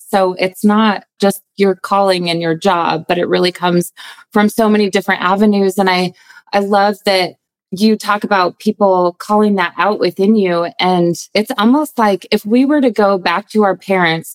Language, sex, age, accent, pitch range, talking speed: English, female, 20-39, American, 170-210 Hz, 190 wpm